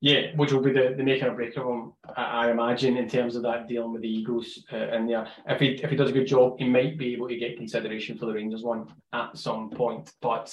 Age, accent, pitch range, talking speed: 20-39, British, 120-140 Hz, 270 wpm